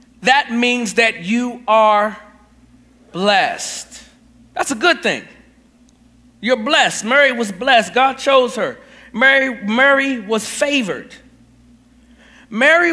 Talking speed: 105 wpm